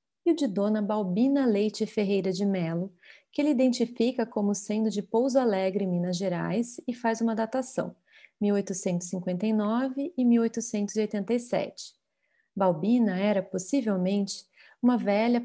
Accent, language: Brazilian, Portuguese